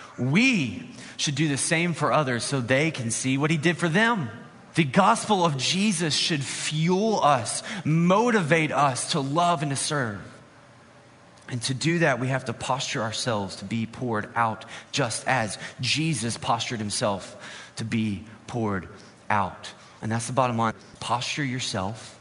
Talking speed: 160 wpm